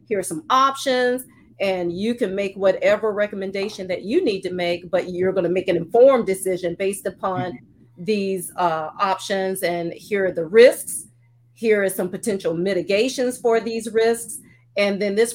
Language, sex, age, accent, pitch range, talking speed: English, female, 40-59, American, 180-225 Hz, 170 wpm